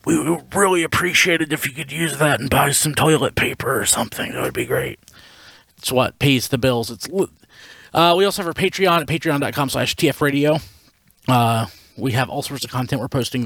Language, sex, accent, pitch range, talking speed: English, male, American, 115-140 Hz, 205 wpm